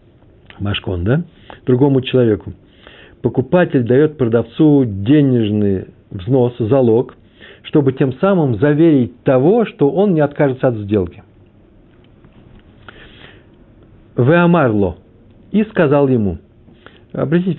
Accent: native